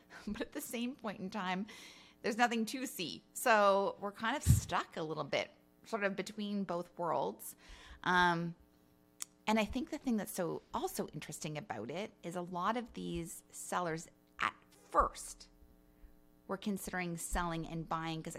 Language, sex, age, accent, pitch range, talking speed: English, female, 30-49, American, 150-195 Hz, 165 wpm